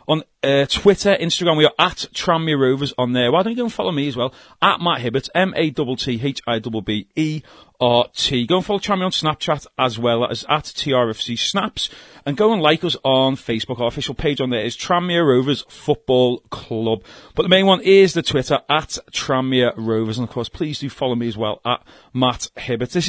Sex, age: male, 40-59